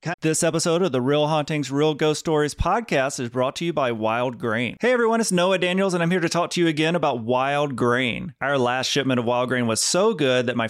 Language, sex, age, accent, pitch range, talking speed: English, male, 30-49, American, 120-155 Hz, 245 wpm